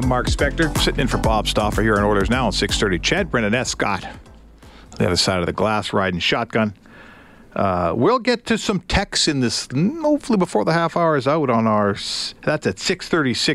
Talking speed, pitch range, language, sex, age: 200 wpm, 115-160 Hz, English, male, 50-69